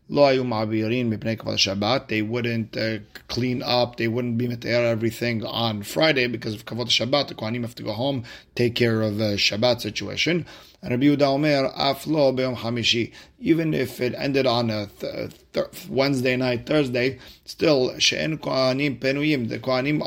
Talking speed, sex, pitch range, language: 135 wpm, male, 115-135 Hz, English